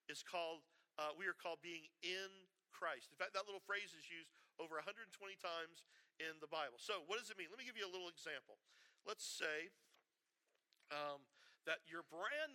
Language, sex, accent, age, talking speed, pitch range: English, male, American, 50-69, 190 wpm, 150-190 Hz